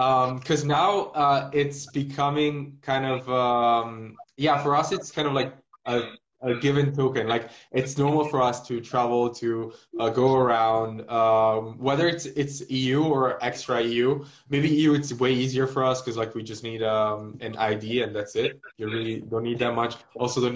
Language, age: English, 20-39